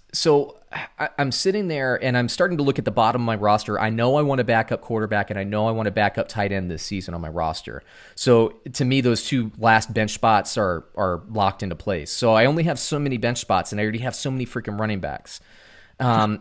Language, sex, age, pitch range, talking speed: English, male, 30-49, 100-125 Hz, 250 wpm